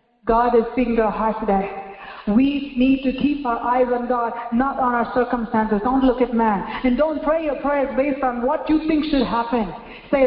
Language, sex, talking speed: English, female, 205 wpm